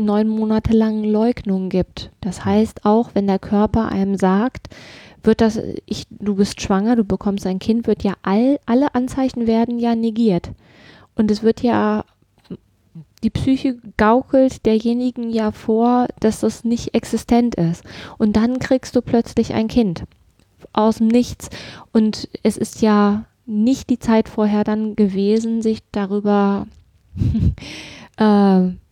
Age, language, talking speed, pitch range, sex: 20-39, German, 145 wpm, 195-225 Hz, female